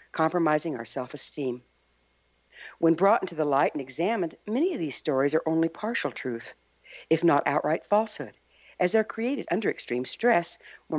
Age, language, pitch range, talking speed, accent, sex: 60-79, English, 125-190 Hz, 160 wpm, American, female